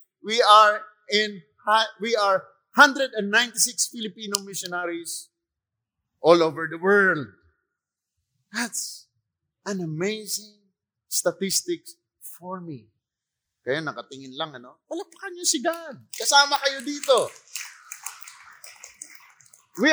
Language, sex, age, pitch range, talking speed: English, male, 30-49, 155-215 Hz, 75 wpm